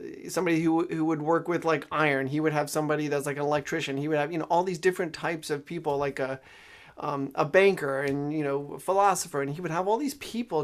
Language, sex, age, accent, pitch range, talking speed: English, male, 30-49, American, 140-170 Hz, 250 wpm